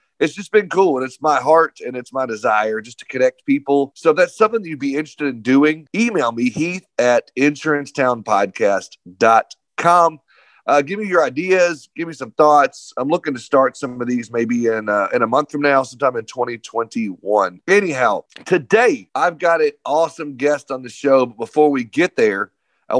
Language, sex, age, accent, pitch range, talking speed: English, male, 40-59, American, 130-185 Hz, 195 wpm